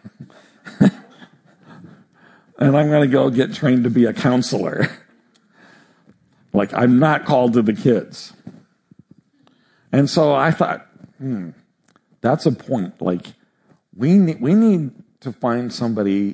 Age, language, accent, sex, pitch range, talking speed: 50-69, English, American, male, 110-150 Hz, 125 wpm